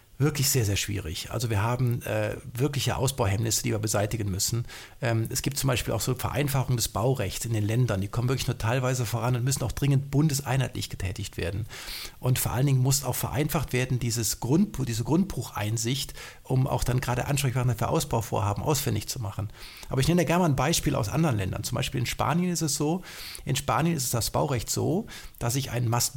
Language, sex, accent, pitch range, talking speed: German, male, German, 115-140 Hz, 210 wpm